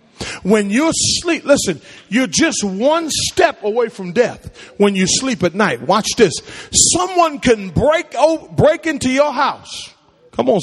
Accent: American